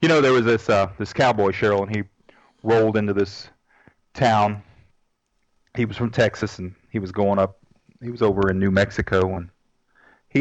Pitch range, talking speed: 100-115 Hz, 185 wpm